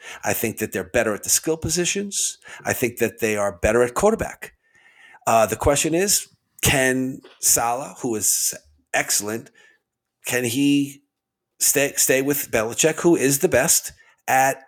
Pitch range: 115-145 Hz